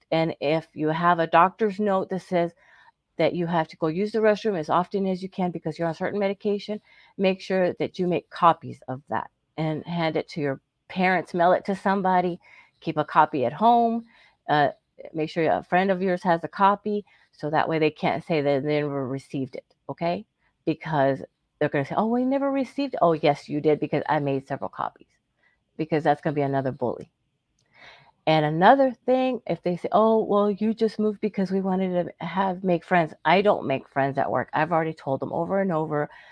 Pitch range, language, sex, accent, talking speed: 160-215 Hz, English, female, American, 215 wpm